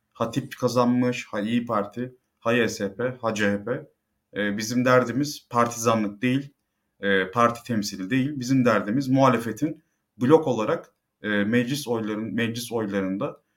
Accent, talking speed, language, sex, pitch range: native, 115 wpm, Turkish, male, 105-130 Hz